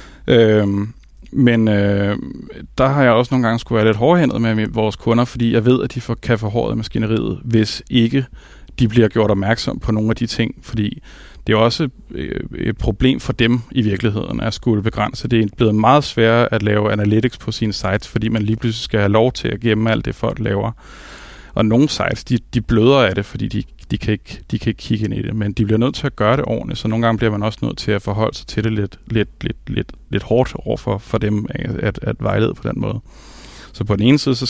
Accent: native